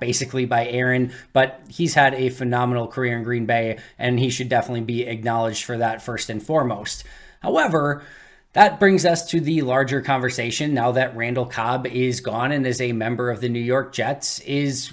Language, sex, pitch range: English, male, 120-140 Hz